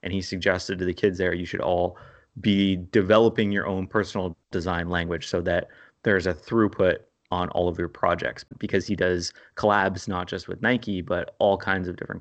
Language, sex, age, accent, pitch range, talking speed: English, male, 30-49, American, 90-110 Hz, 195 wpm